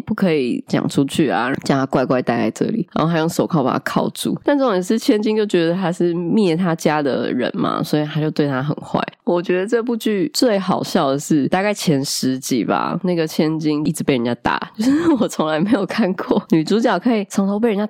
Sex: female